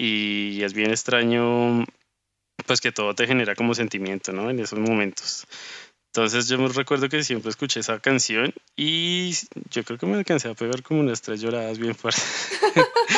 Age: 20-39